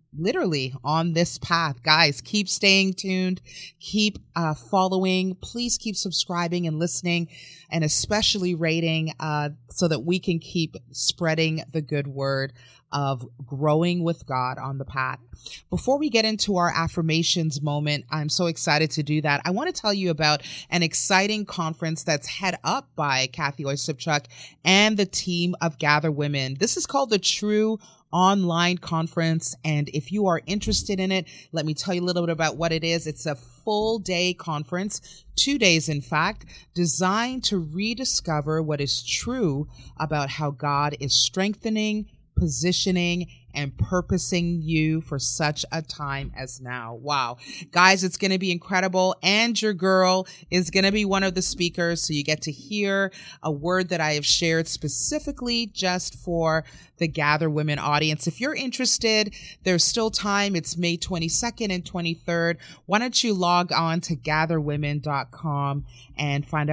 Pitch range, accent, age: 150-190 Hz, American, 30-49